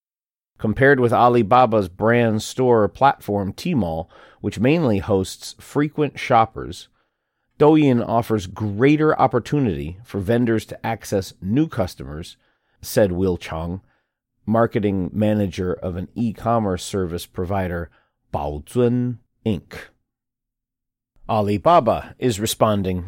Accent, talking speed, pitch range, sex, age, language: American, 95 wpm, 95-125 Hz, male, 40-59, English